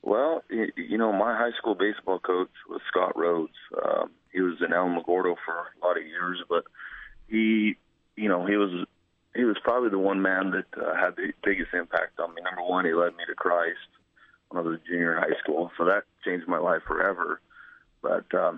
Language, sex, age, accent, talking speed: English, male, 30-49, American, 205 wpm